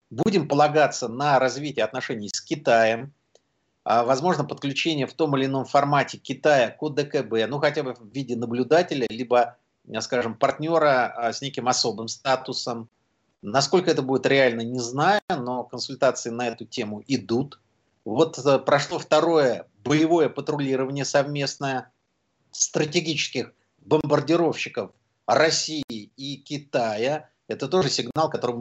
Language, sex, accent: Russian, male, native